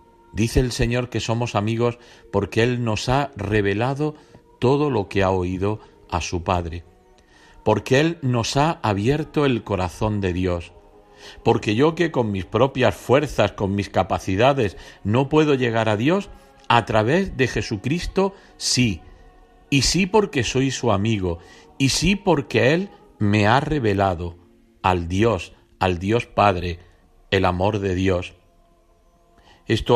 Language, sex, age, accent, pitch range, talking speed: Spanish, male, 50-69, Spanish, 95-130 Hz, 140 wpm